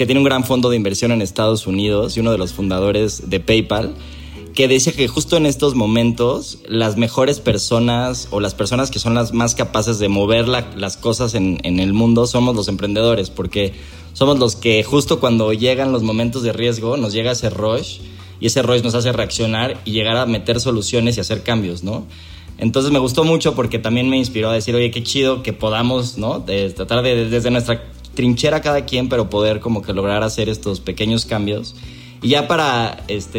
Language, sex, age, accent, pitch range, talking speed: Spanish, male, 20-39, Mexican, 100-125 Hz, 210 wpm